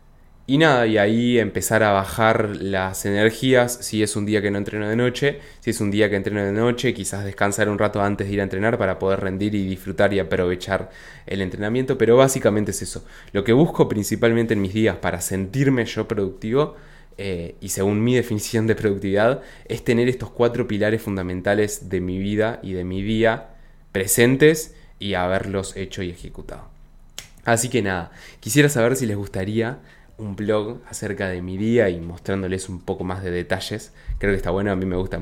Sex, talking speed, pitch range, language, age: male, 195 wpm, 95-115 Hz, Spanish, 20-39